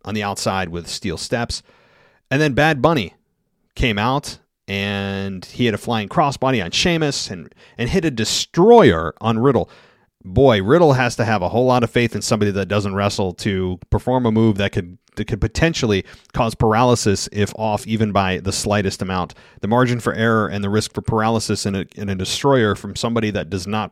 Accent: American